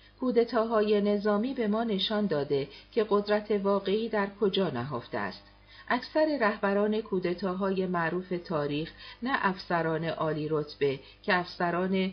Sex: female